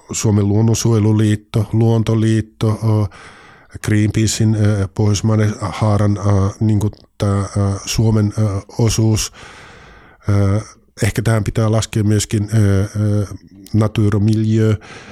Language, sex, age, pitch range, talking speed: Finnish, male, 50-69, 100-115 Hz, 65 wpm